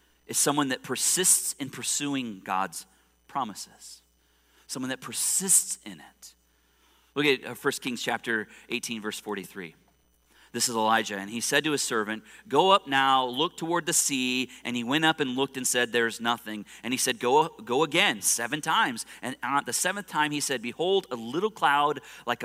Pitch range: 100-135 Hz